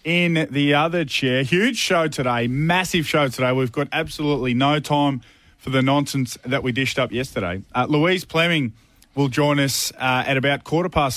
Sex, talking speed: male, 185 wpm